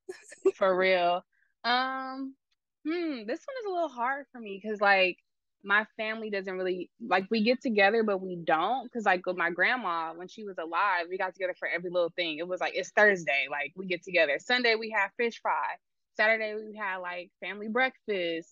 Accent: American